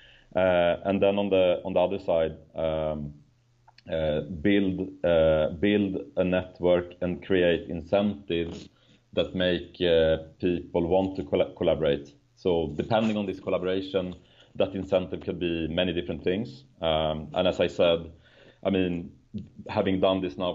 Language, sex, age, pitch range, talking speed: English, male, 30-49, 80-95 Hz, 140 wpm